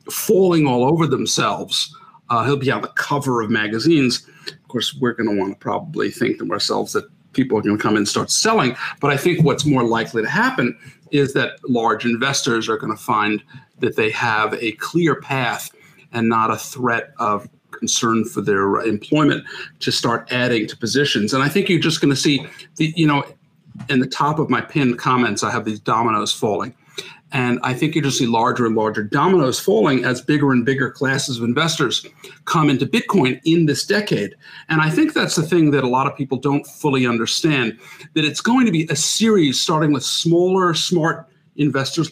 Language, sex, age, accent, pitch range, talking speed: English, male, 50-69, American, 125-165 Hz, 200 wpm